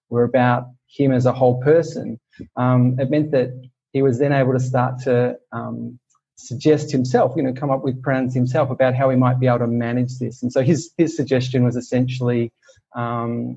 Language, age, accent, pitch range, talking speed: English, 30-49, Australian, 120-135 Hz, 200 wpm